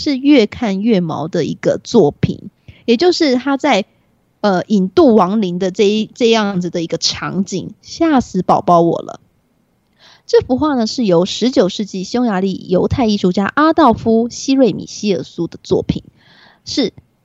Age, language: 20-39, Chinese